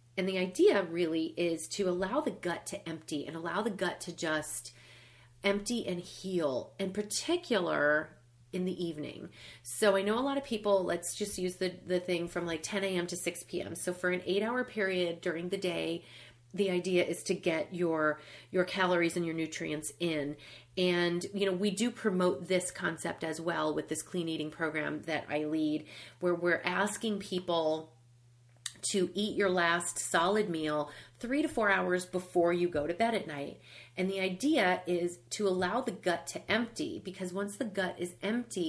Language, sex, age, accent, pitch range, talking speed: English, female, 30-49, American, 165-200 Hz, 185 wpm